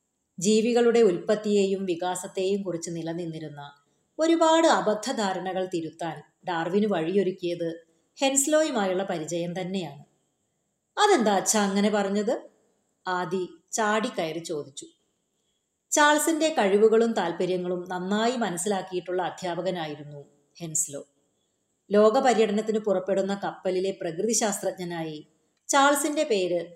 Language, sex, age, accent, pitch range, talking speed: Malayalam, female, 30-49, native, 175-225 Hz, 80 wpm